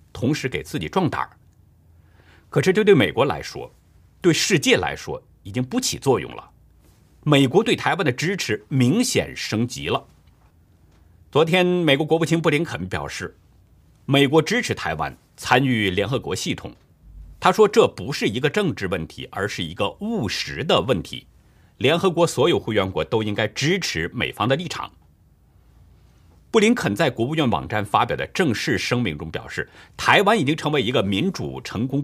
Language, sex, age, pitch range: Chinese, male, 50-69, 100-165 Hz